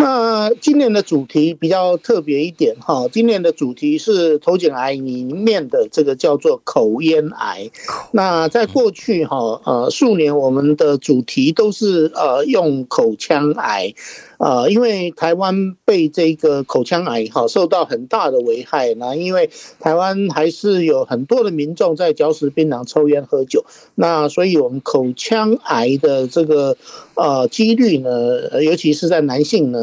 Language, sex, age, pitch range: Chinese, male, 50-69, 150-240 Hz